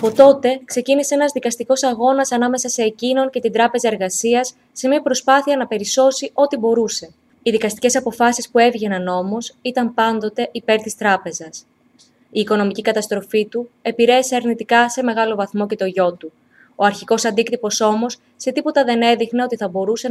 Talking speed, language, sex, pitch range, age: 165 wpm, Greek, female, 200-245 Hz, 20-39